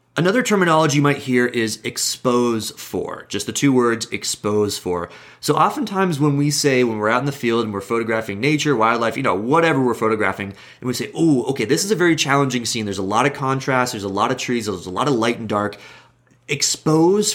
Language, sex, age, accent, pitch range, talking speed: English, male, 30-49, American, 100-130 Hz, 220 wpm